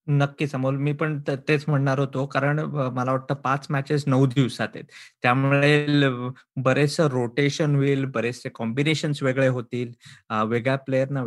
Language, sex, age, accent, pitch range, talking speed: Marathi, male, 20-39, native, 135-170 Hz, 135 wpm